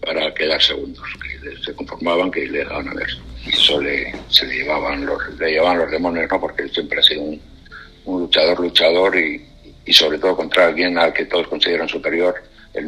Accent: Spanish